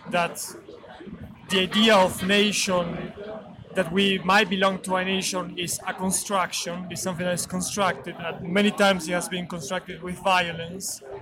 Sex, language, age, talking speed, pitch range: male, Italian, 30-49, 150 wpm, 175-195 Hz